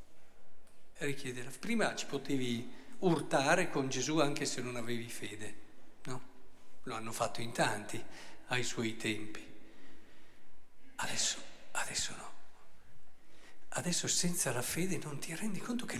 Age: 50-69